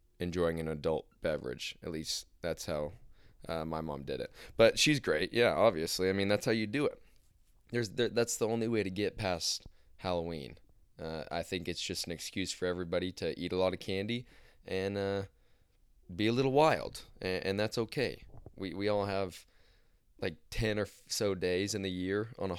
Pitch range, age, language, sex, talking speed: 85-110 Hz, 20-39, English, male, 190 wpm